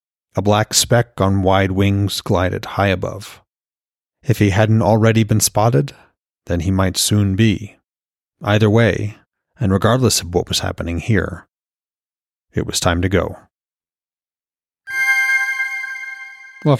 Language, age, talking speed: English, 40-59, 125 wpm